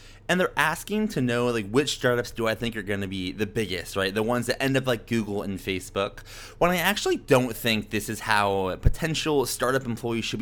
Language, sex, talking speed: English, male, 225 wpm